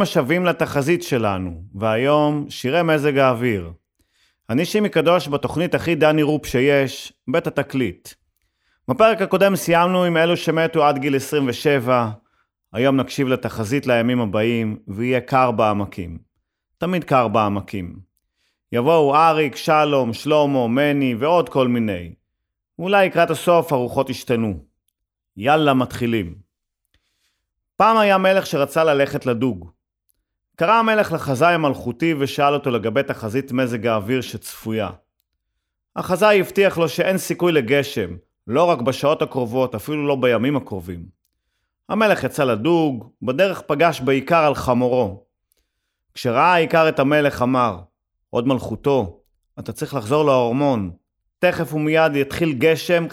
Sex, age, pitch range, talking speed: male, 30-49, 110-160 Hz, 120 wpm